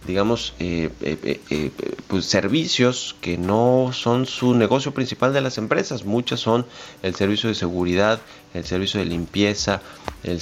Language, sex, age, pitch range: Spanish, male, 30-49, 90-115 Hz